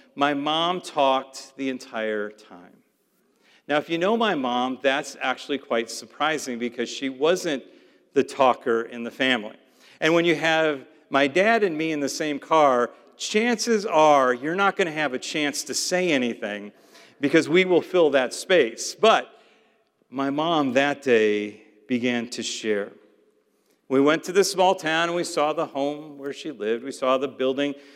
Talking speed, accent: 170 wpm, American